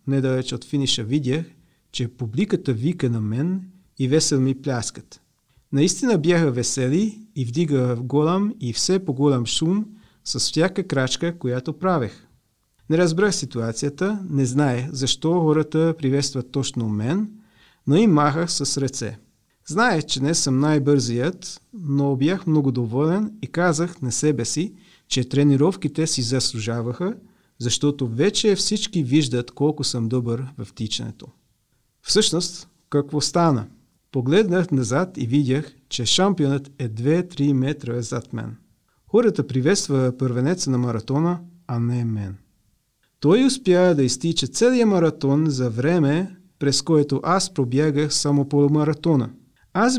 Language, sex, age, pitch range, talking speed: Bulgarian, male, 40-59, 130-175 Hz, 130 wpm